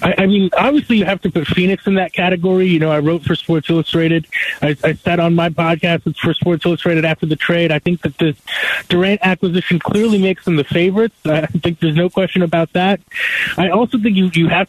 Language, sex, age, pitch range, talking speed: English, male, 20-39, 170-195 Hz, 225 wpm